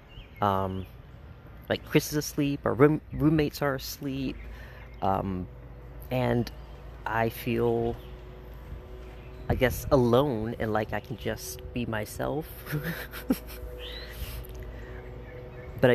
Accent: American